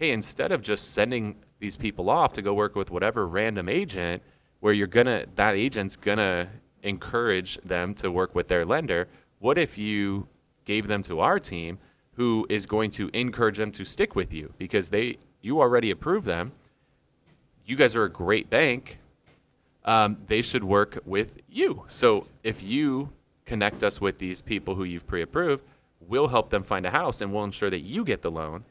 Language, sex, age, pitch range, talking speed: English, male, 30-49, 90-105 Hz, 185 wpm